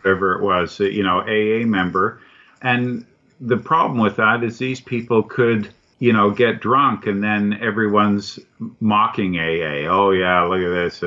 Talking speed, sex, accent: 165 wpm, male, American